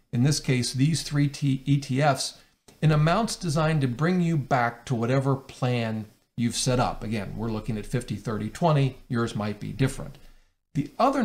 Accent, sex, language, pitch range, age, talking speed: American, male, English, 120-145 Hz, 50-69, 170 wpm